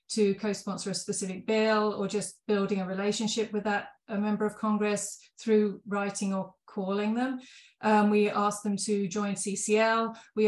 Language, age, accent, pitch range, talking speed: English, 30-49, British, 205-230 Hz, 160 wpm